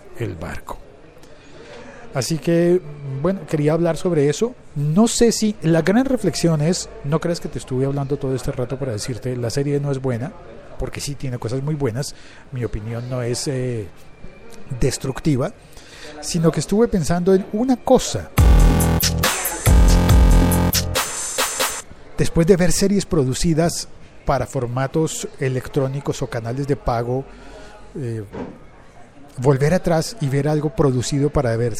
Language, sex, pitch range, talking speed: Spanish, male, 125-165 Hz, 135 wpm